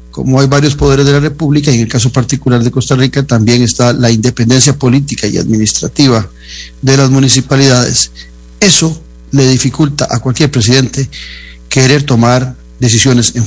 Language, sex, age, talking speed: Spanish, male, 40-59, 150 wpm